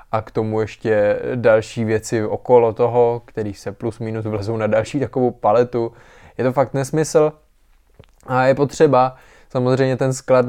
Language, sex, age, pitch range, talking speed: Czech, male, 20-39, 110-130 Hz, 155 wpm